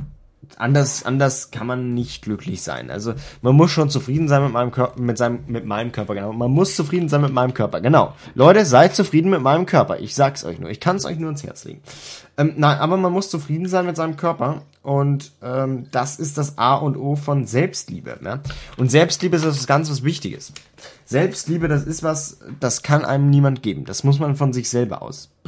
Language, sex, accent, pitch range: German, male, German, 115-150 Hz